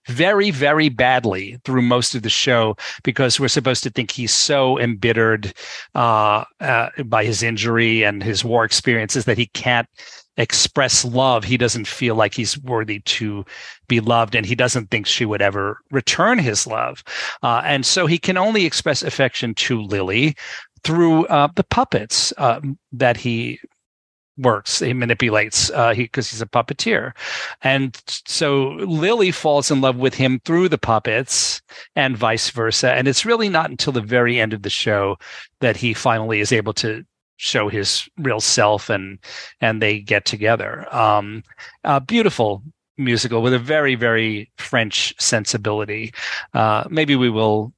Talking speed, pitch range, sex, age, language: 160 wpm, 110-130 Hz, male, 40-59, English